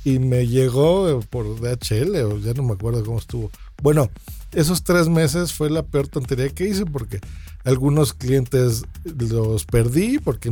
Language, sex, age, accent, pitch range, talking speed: Spanish, male, 40-59, Mexican, 115-150 Hz, 160 wpm